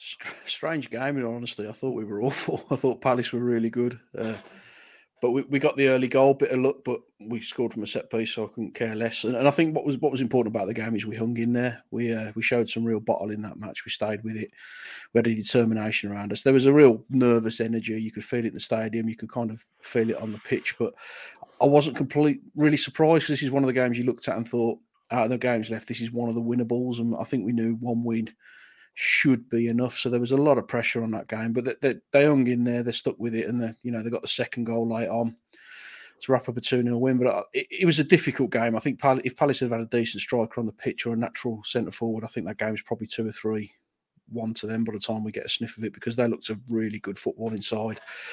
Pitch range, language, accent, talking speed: 115-130 Hz, English, British, 275 wpm